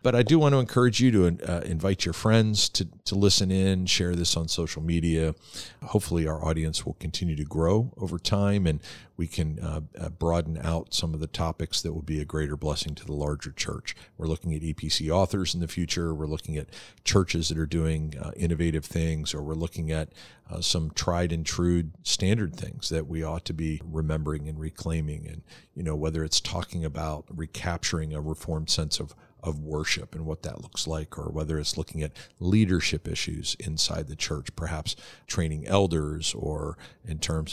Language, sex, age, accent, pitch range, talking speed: English, male, 50-69, American, 80-90 Hz, 195 wpm